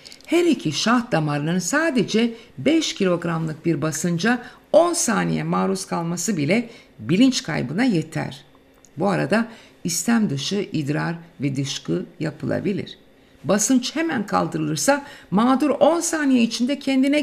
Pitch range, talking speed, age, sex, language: 170-250 Hz, 115 wpm, 60-79, female, Turkish